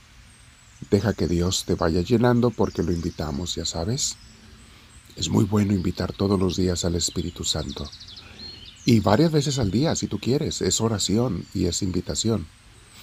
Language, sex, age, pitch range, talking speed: Spanish, male, 50-69, 85-110 Hz, 155 wpm